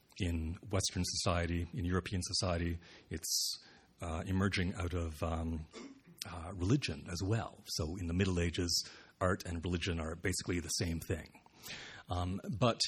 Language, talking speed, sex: English, 145 wpm, male